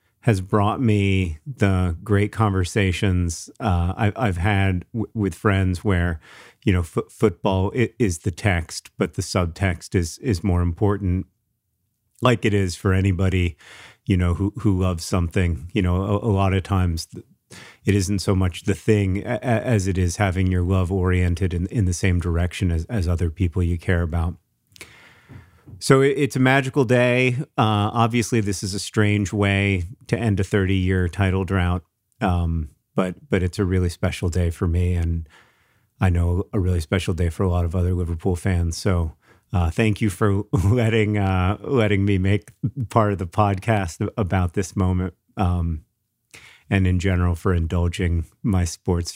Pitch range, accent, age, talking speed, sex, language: 90-105 Hz, American, 40-59, 170 wpm, male, English